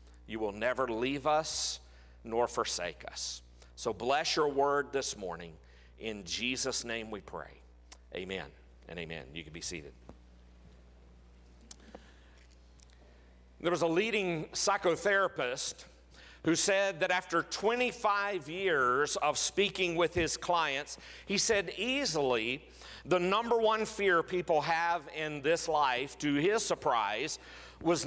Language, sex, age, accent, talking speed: English, male, 50-69, American, 125 wpm